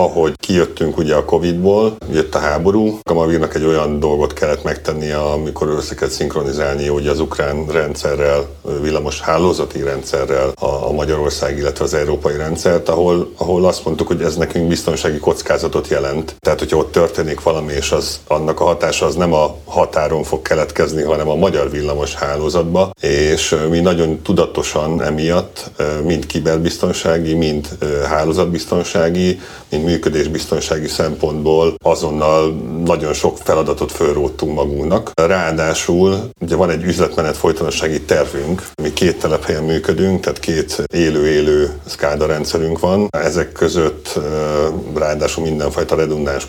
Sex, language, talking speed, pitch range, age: male, Hungarian, 125 wpm, 75-85 Hz, 60-79